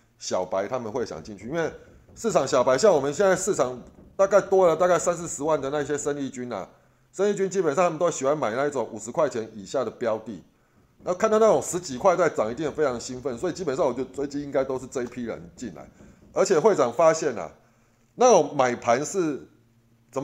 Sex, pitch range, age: male, 125-190 Hz, 30-49